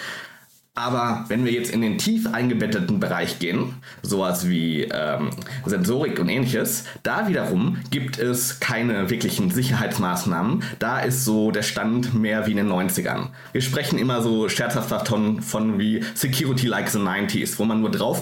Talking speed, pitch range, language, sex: 160 wpm, 110-130 Hz, German, male